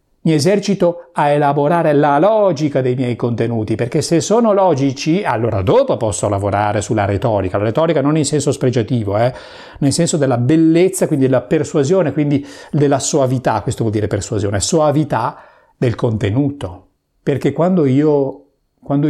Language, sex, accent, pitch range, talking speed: Italian, male, native, 110-155 Hz, 150 wpm